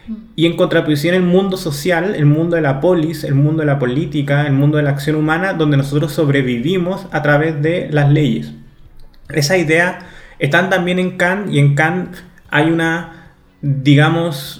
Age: 20-39